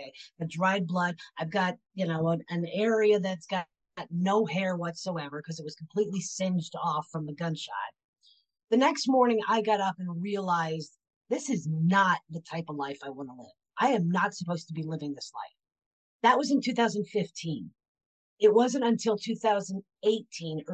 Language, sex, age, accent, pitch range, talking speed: English, female, 40-59, American, 170-220 Hz, 175 wpm